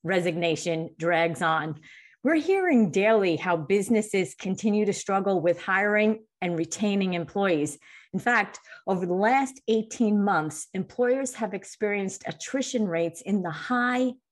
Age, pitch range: 40-59, 175-245 Hz